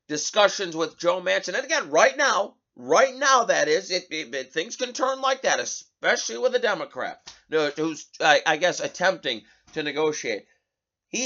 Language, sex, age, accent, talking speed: English, male, 30-49, American, 160 wpm